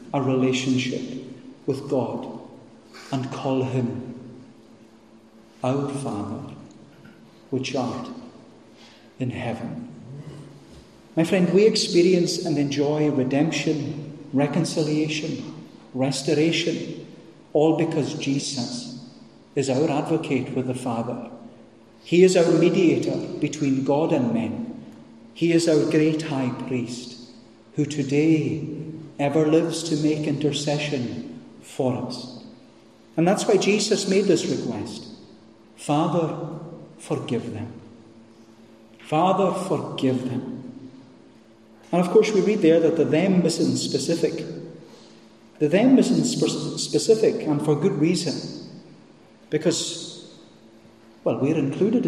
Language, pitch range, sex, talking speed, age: English, 120-165 Hz, male, 105 wpm, 50-69